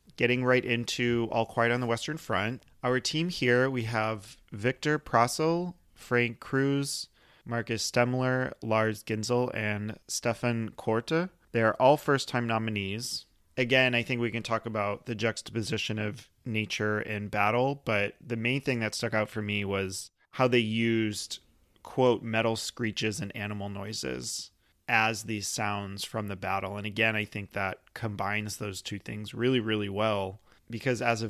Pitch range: 105-120 Hz